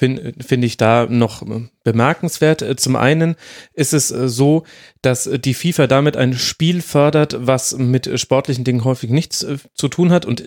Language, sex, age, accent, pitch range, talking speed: German, male, 30-49, German, 120-145 Hz, 155 wpm